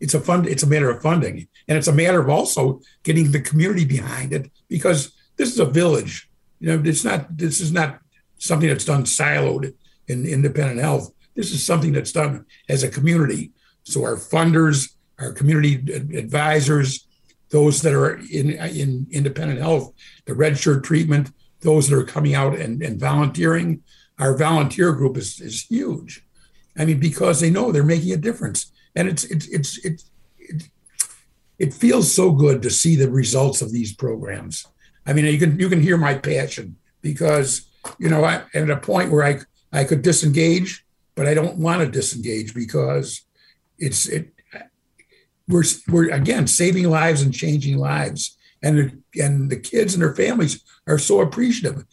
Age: 60-79